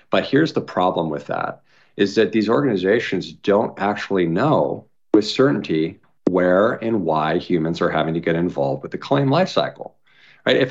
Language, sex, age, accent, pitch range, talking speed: English, male, 50-69, American, 85-105 Hz, 170 wpm